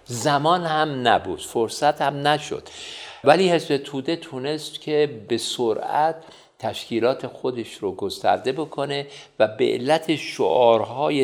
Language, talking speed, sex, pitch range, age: Persian, 115 wpm, male, 110-150 Hz, 50-69